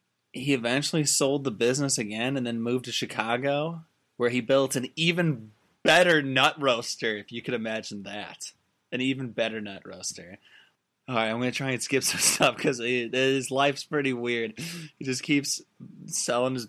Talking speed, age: 175 wpm, 20-39